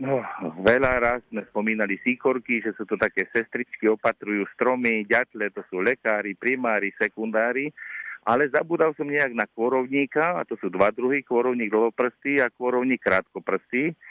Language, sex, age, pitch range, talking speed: Slovak, male, 50-69, 110-130 Hz, 150 wpm